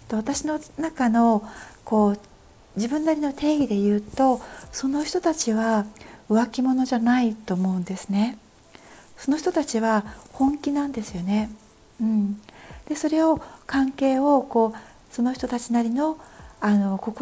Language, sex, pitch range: Japanese, female, 205-270 Hz